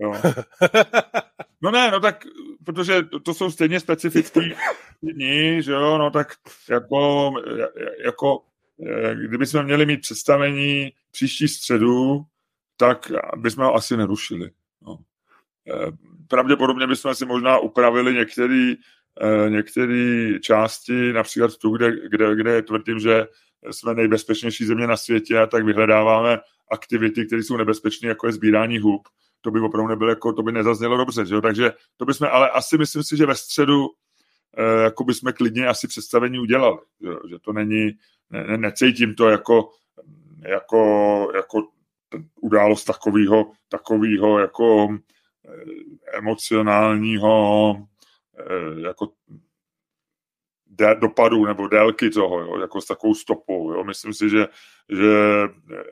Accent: native